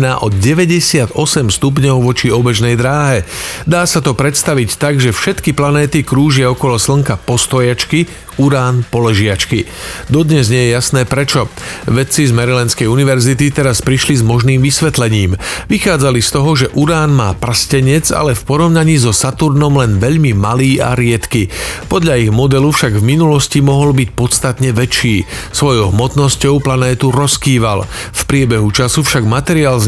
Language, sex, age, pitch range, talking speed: Slovak, male, 40-59, 120-145 Hz, 145 wpm